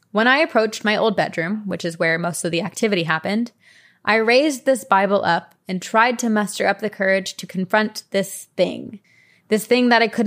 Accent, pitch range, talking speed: American, 180-210 Hz, 205 wpm